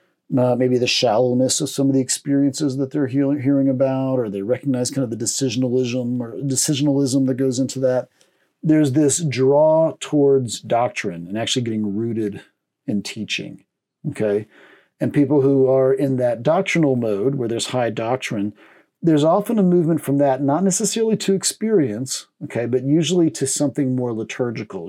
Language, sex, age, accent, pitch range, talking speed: English, male, 40-59, American, 125-150 Hz, 165 wpm